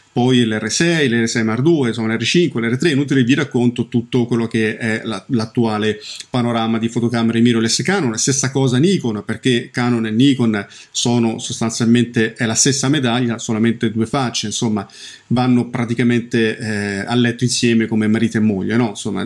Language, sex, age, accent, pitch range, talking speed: Italian, male, 40-59, native, 115-140 Hz, 165 wpm